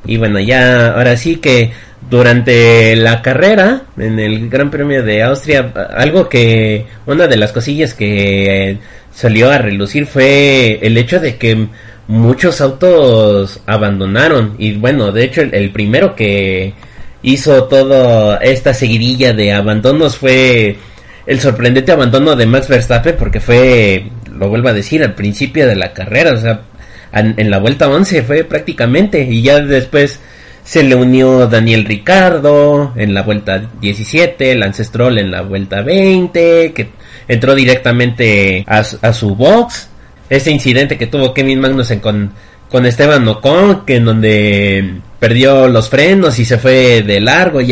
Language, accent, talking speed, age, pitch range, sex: Spanish, Mexican, 155 wpm, 30-49, 105-135 Hz, male